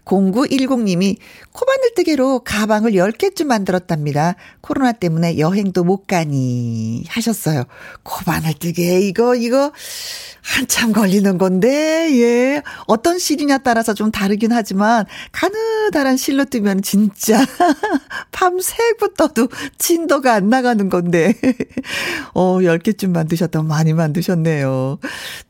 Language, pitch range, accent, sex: Korean, 180-265 Hz, native, female